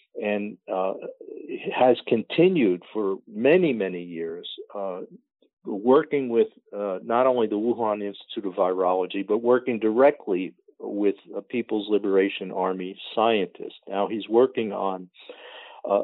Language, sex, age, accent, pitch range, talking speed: English, male, 50-69, American, 95-125 Hz, 125 wpm